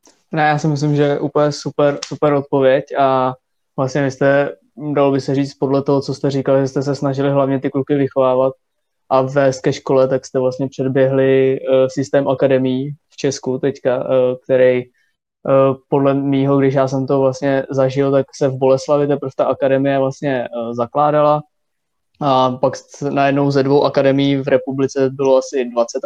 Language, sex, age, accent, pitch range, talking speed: Czech, male, 20-39, native, 130-140 Hz, 175 wpm